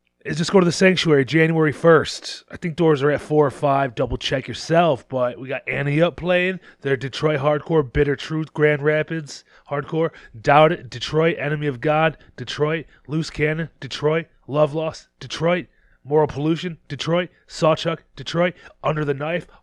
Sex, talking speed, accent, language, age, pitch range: male, 165 wpm, American, English, 30-49, 125-160 Hz